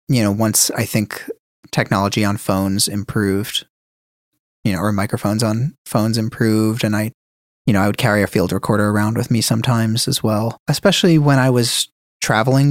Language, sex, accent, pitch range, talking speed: English, male, American, 100-120 Hz, 175 wpm